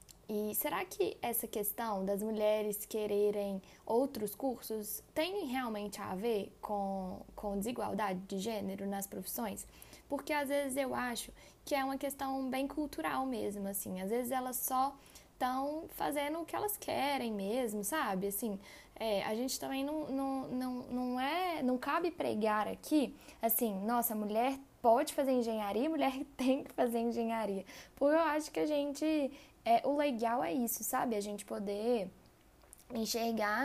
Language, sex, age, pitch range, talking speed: Portuguese, female, 10-29, 210-280 Hz, 150 wpm